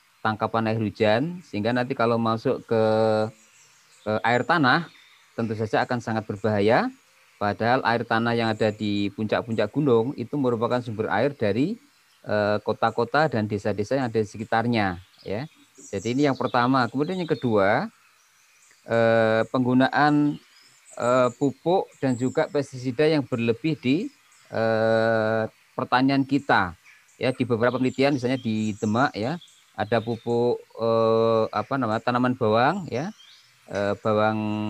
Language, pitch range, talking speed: Indonesian, 110-130 Hz, 130 wpm